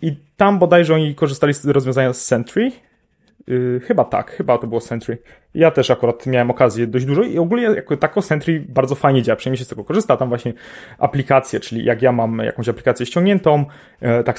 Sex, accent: male, native